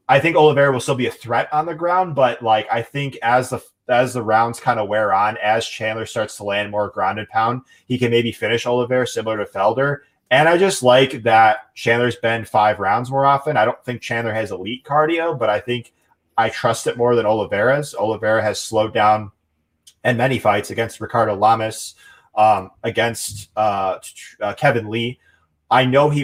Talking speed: 195 wpm